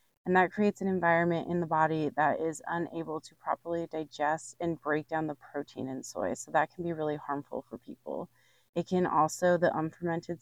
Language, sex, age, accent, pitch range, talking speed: English, female, 20-39, American, 155-190 Hz, 195 wpm